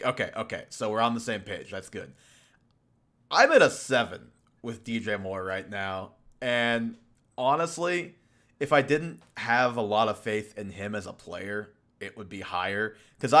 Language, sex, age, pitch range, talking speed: English, male, 20-39, 105-130 Hz, 175 wpm